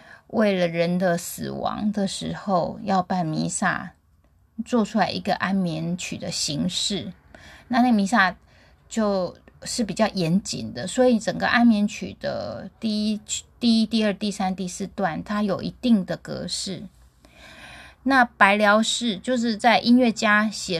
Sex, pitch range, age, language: female, 185-230 Hz, 20-39, Chinese